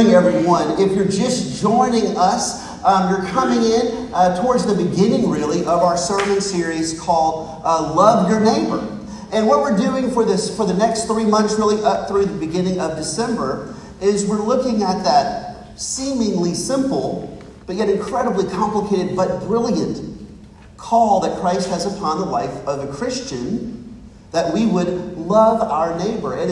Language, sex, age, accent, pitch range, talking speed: English, male, 40-59, American, 175-225 Hz, 165 wpm